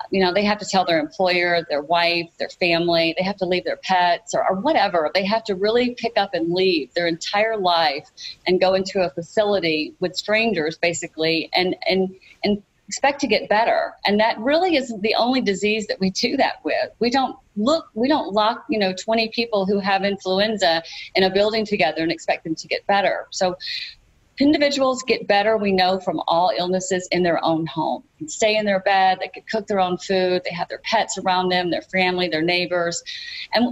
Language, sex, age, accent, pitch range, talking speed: English, female, 40-59, American, 175-220 Hz, 210 wpm